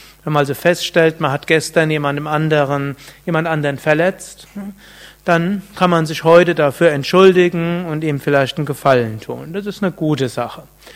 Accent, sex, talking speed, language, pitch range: German, male, 160 wpm, German, 145-175 Hz